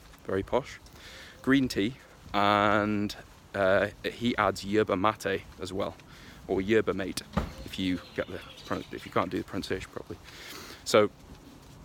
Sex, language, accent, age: male, English, British, 20-39